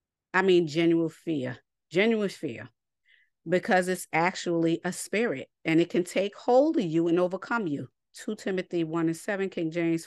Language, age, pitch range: English, 40-59, 160-195 Hz